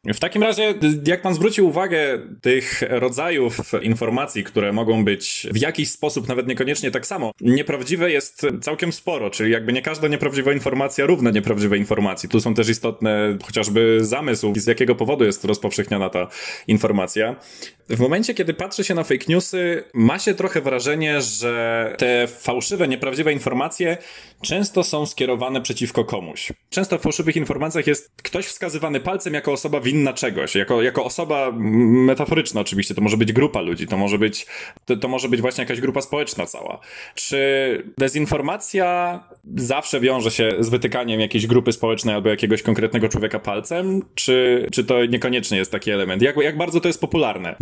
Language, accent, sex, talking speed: Polish, native, male, 165 wpm